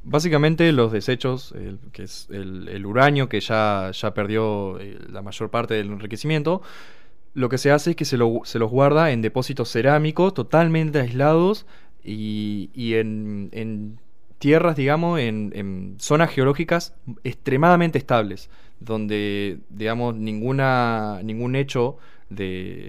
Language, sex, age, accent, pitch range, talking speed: Spanish, male, 20-39, Argentinian, 105-140 Hz, 135 wpm